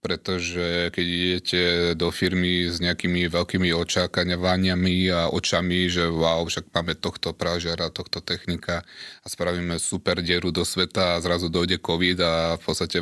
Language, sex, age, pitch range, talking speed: Slovak, male, 30-49, 80-90 Hz, 150 wpm